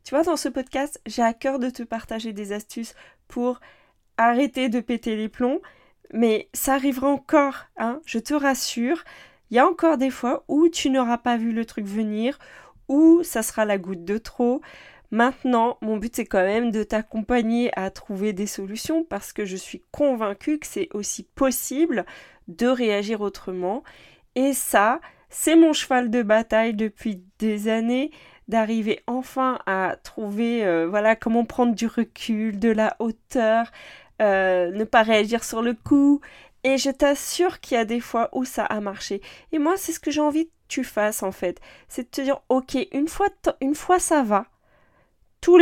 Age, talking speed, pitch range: 20-39, 185 wpm, 215-270 Hz